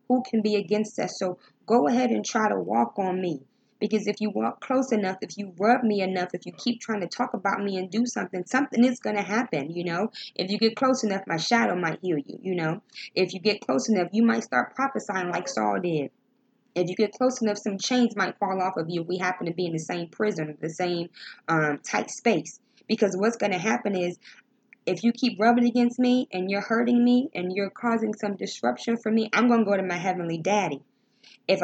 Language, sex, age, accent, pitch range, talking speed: English, female, 20-39, American, 175-225 Hz, 230 wpm